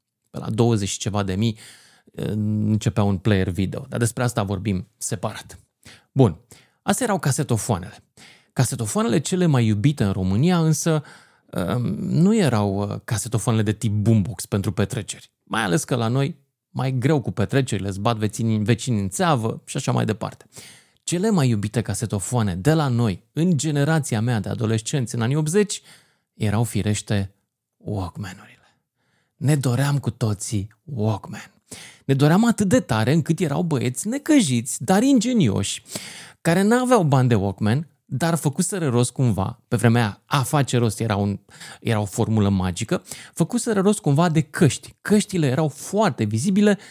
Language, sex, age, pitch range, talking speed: Romanian, male, 30-49, 110-165 Hz, 145 wpm